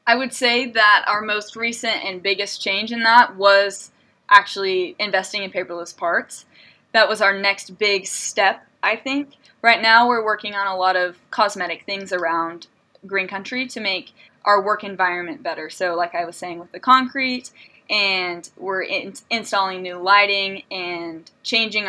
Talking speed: 165 wpm